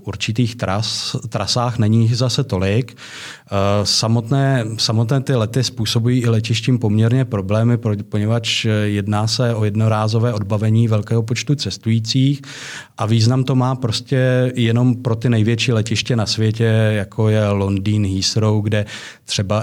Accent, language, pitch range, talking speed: native, Czech, 105-120 Hz, 130 wpm